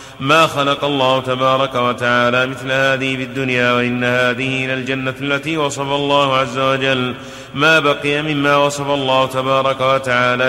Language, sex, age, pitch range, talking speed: Arabic, male, 30-49, 130-145 Hz, 135 wpm